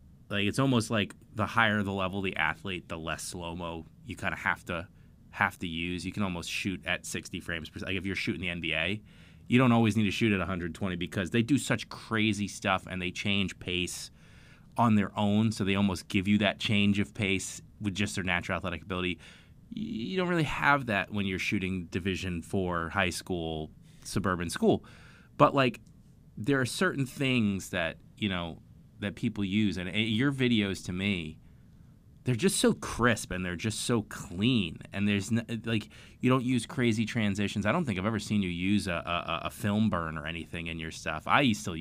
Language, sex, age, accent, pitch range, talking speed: English, male, 20-39, American, 85-110 Hz, 200 wpm